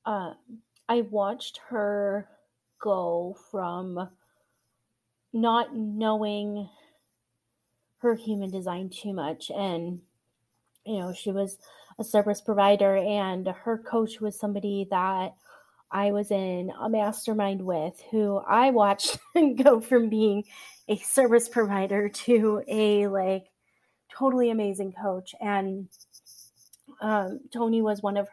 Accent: American